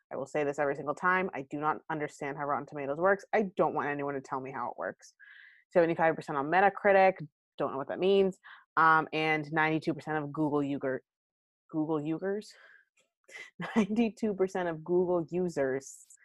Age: 30-49